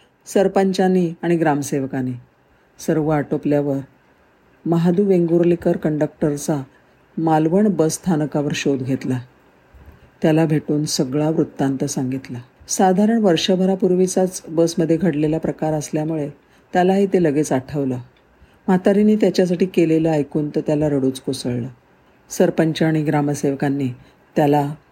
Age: 50-69